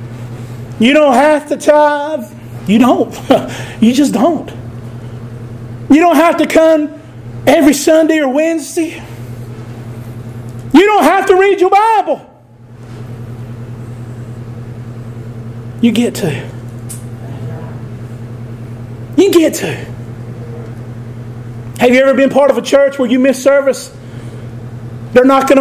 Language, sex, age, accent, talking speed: English, male, 40-59, American, 110 wpm